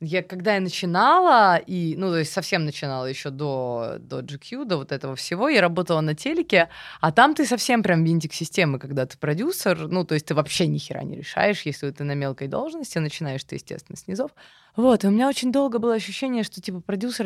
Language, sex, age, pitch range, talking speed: Russian, female, 20-39, 160-215 Hz, 210 wpm